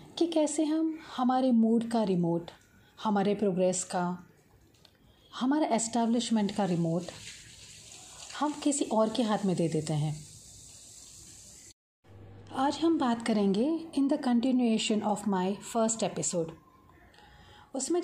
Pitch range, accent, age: 195-275 Hz, Indian, 40-59